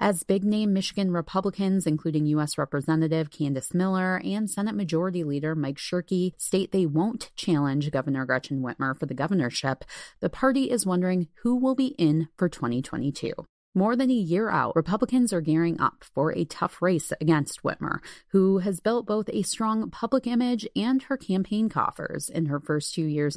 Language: English